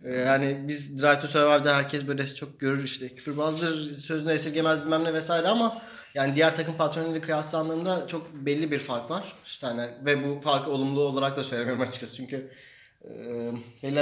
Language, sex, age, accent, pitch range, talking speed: Turkish, male, 30-49, native, 135-170 Hz, 170 wpm